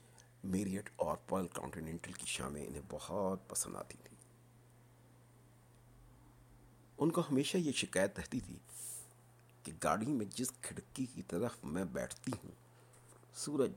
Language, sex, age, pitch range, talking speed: Urdu, male, 60-79, 115-125 Hz, 125 wpm